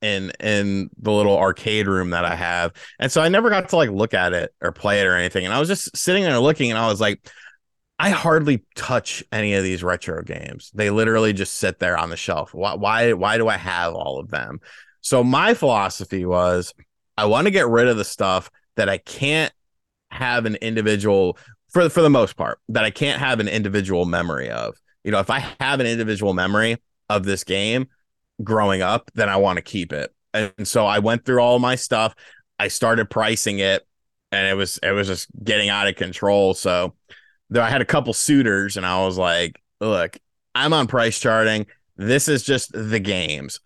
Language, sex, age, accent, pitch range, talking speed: English, male, 30-49, American, 95-125 Hz, 210 wpm